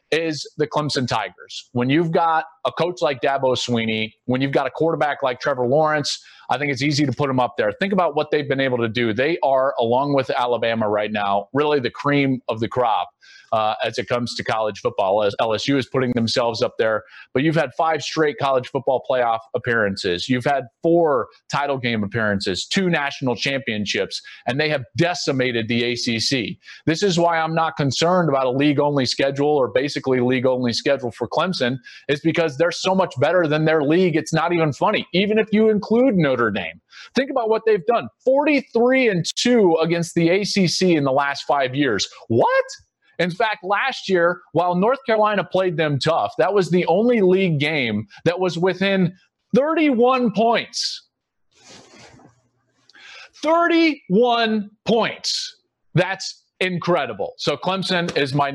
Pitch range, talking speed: 130-185 Hz, 170 wpm